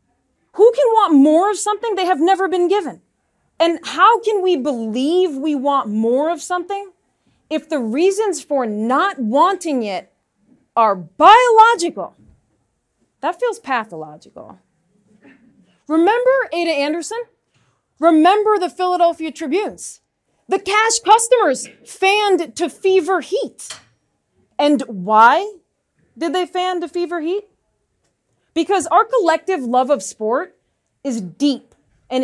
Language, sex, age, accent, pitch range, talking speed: English, female, 30-49, American, 255-375 Hz, 120 wpm